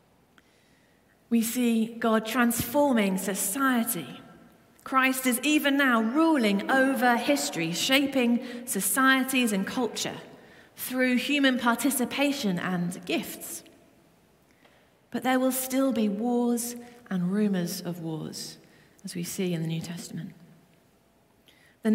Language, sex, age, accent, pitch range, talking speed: English, female, 40-59, British, 190-250 Hz, 105 wpm